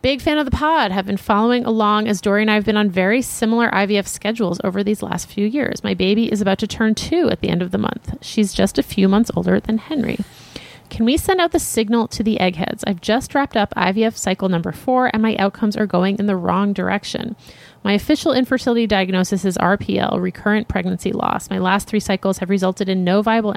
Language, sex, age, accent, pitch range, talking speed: English, female, 30-49, American, 195-235 Hz, 230 wpm